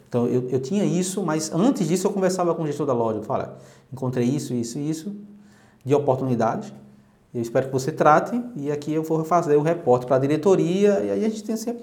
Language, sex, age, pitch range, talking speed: Portuguese, male, 20-39, 135-200 Hz, 230 wpm